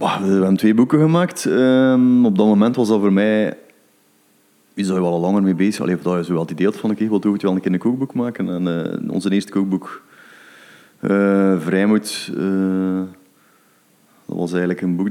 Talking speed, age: 205 wpm, 30-49